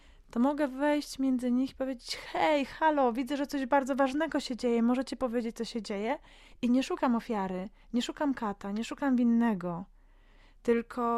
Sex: female